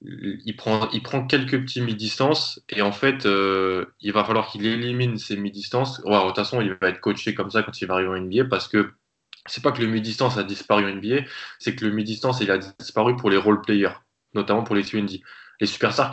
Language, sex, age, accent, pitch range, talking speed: French, male, 20-39, French, 95-115 Hz, 235 wpm